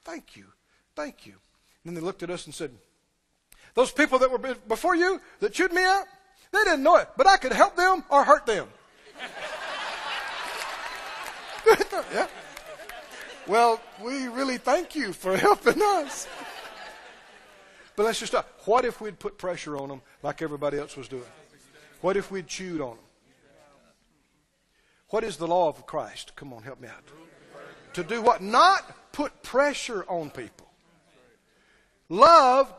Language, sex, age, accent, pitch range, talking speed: English, male, 50-69, American, 205-320 Hz, 155 wpm